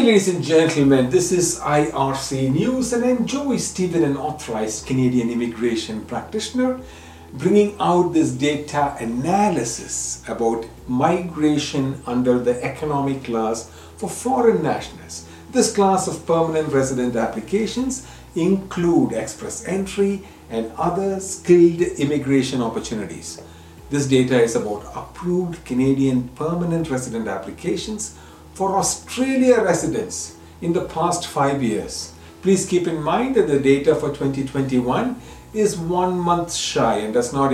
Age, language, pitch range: 50-69, English, 115-180 Hz